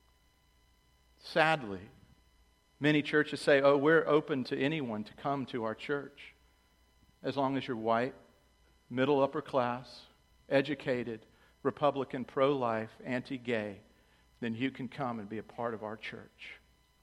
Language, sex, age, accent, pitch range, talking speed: English, male, 50-69, American, 110-140 Hz, 130 wpm